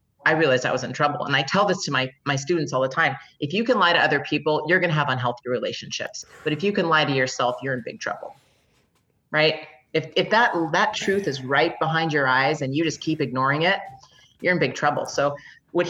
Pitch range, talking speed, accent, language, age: 135-165 Hz, 240 wpm, American, English, 30-49